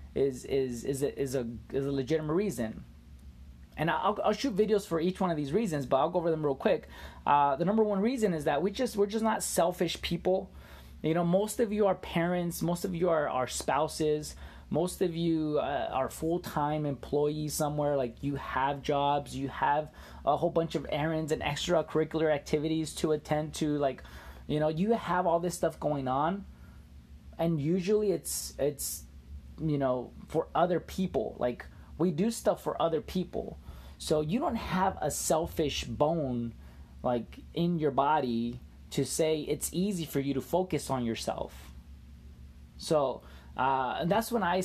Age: 20-39